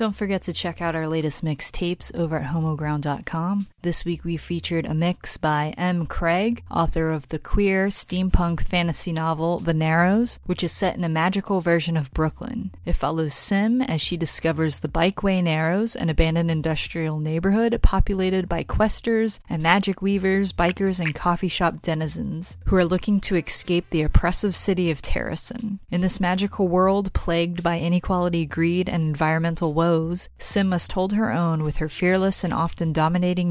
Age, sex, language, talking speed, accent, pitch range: 30-49, female, English, 170 wpm, American, 165-190 Hz